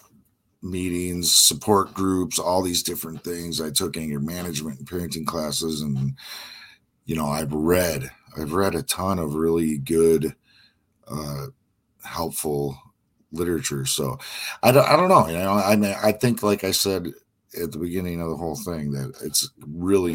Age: 40-59